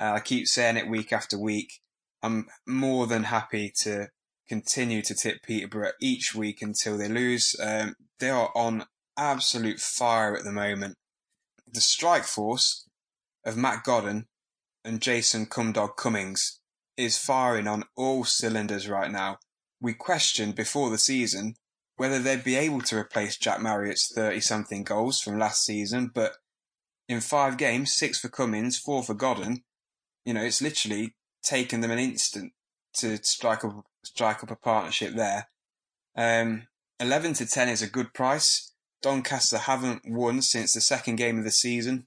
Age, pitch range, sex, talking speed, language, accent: 10-29, 110-125 Hz, male, 155 wpm, English, British